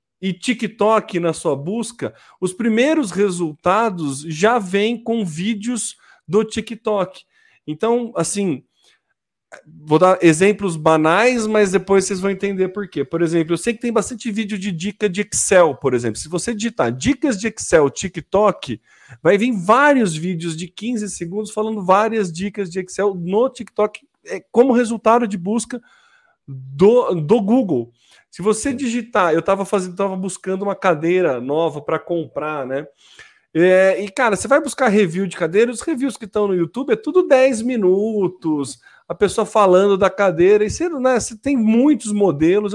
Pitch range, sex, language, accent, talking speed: 180-230 Hz, male, Portuguese, Brazilian, 160 wpm